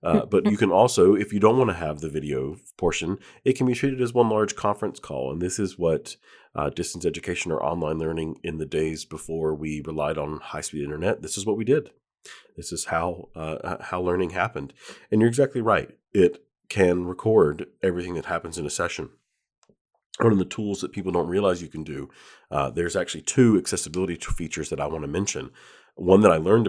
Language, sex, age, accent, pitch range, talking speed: English, male, 40-59, American, 80-105 Hz, 210 wpm